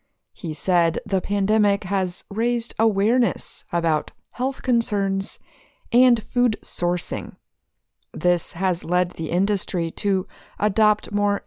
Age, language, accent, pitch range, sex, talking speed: 30-49, English, American, 170-215 Hz, female, 110 wpm